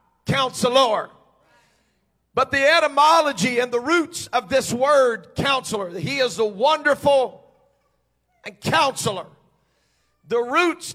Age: 50-69